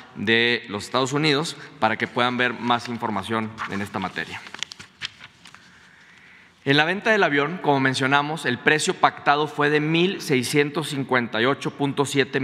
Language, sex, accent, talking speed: Spanish, male, Mexican, 125 wpm